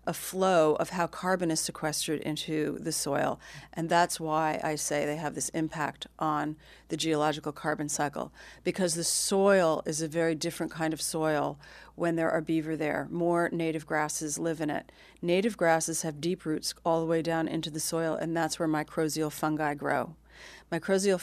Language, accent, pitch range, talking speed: English, American, 155-175 Hz, 180 wpm